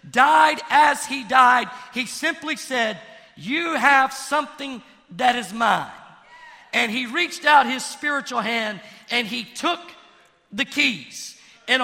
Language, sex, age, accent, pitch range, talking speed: English, male, 50-69, American, 260-320 Hz, 130 wpm